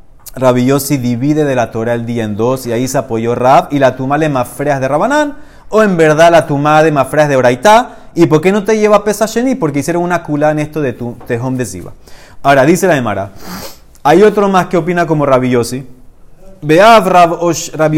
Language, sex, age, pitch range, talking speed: Spanish, male, 30-49, 130-180 Hz, 215 wpm